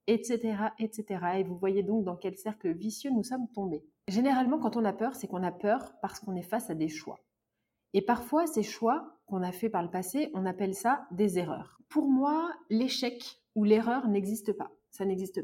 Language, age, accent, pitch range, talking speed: French, 30-49, French, 195-245 Hz, 205 wpm